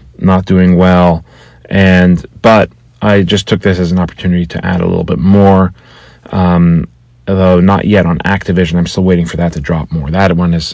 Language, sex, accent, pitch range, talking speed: English, male, American, 90-110 Hz, 195 wpm